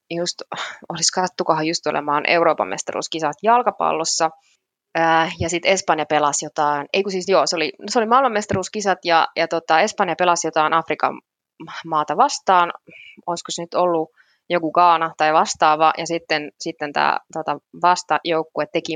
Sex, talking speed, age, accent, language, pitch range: female, 140 wpm, 20-39, native, Finnish, 155-190 Hz